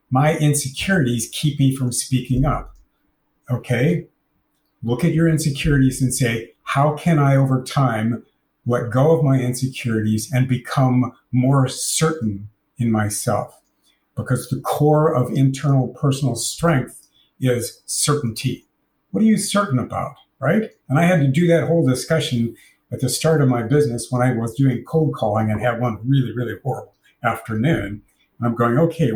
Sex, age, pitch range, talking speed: male, 50-69, 120-145 Hz, 155 wpm